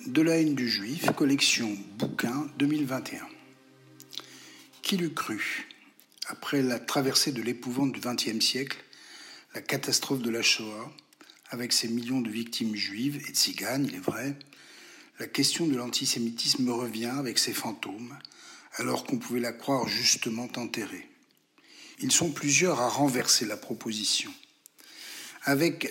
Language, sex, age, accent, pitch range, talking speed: French, male, 60-79, French, 120-150 Hz, 140 wpm